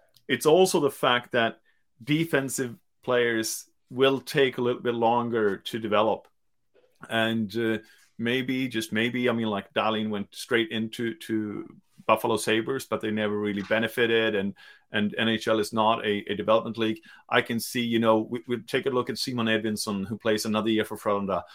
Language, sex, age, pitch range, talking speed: English, male, 30-49, 110-125 Hz, 175 wpm